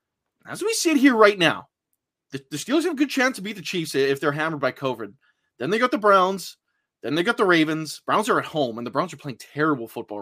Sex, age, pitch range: male, 20-39, 145-230 Hz